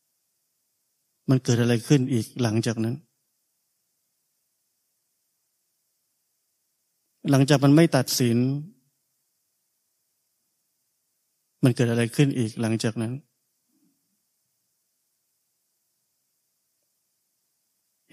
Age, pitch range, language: 20-39, 120-140 Hz, Thai